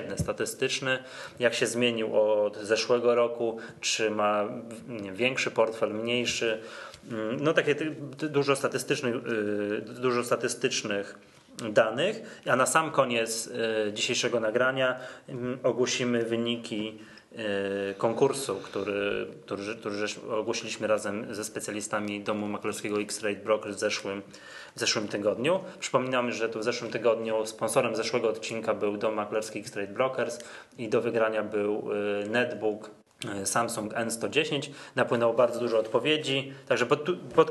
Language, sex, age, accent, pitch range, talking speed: Polish, male, 20-39, native, 105-120 Hz, 115 wpm